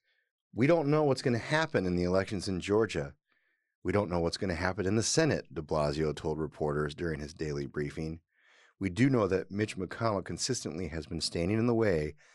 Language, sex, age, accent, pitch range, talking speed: English, male, 30-49, American, 85-115 Hz, 210 wpm